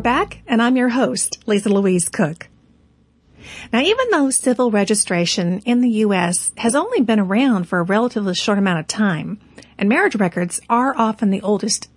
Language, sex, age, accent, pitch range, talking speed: English, female, 40-59, American, 185-235 Hz, 170 wpm